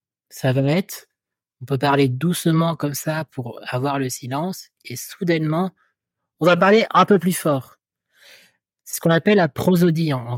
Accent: French